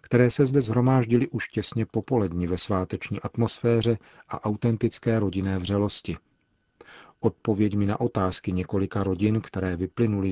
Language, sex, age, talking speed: Czech, male, 40-59, 130 wpm